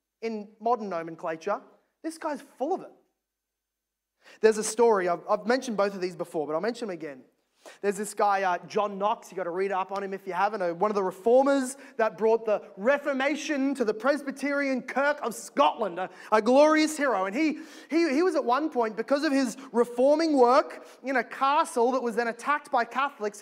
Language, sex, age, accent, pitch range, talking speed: English, male, 20-39, Australian, 215-280 Hz, 200 wpm